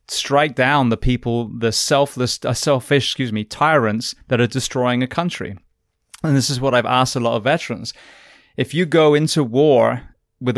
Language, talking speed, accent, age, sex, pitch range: English, 180 wpm, British, 20-39, male, 115-135 Hz